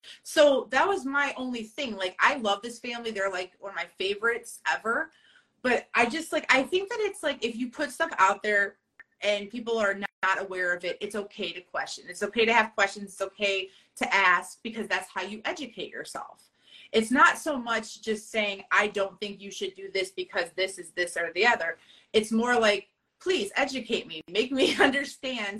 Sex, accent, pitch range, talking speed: female, American, 195-250 Hz, 205 wpm